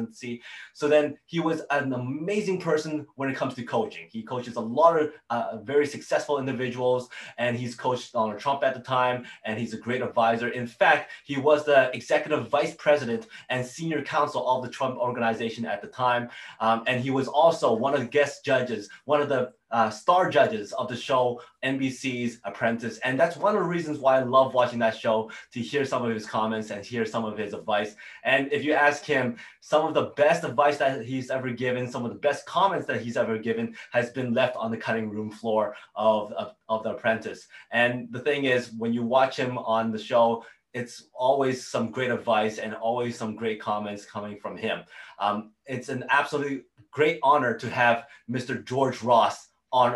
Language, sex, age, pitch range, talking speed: English, male, 20-39, 115-140 Hz, 200 wpm